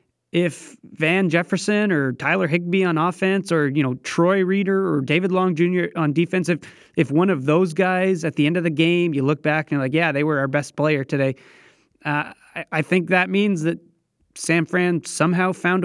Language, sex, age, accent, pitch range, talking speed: English, male, 20-39, American, 140-175 Hz, 200 wpm